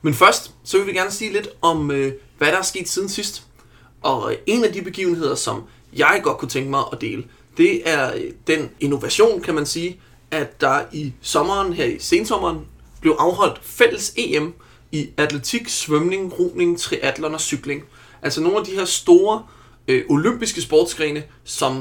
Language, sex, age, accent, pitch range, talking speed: Danish, male, 30-49, native, 140-215 Hz, 175 wpm